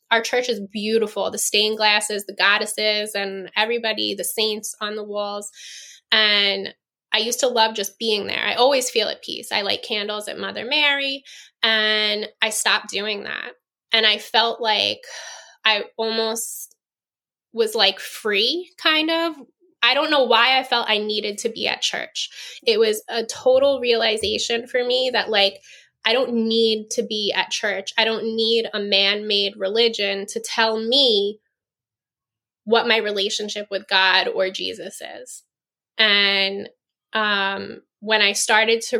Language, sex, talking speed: English, female, 155 wpm